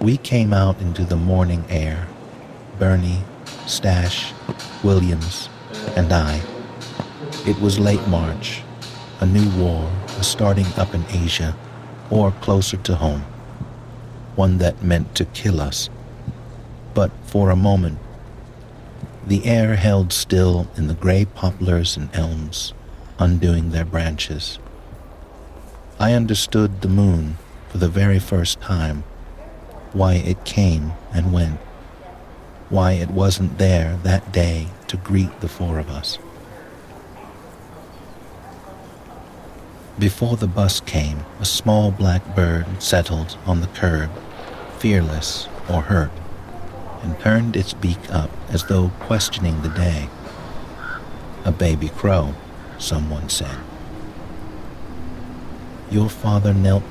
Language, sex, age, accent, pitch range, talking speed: English, male, 60-79, American, 80-105 Hz, 115 wpm